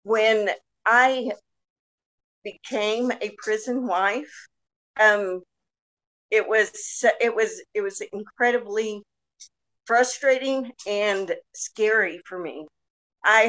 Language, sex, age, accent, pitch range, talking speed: English, female, 50-69, American, 200-240 Hz, 90 wpm